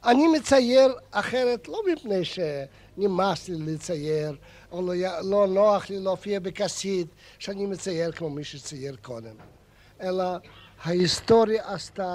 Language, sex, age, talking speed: Hebrew, male, 60-79, 115 wpm